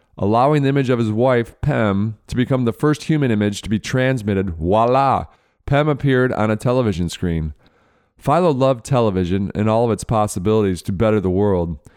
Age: 40-59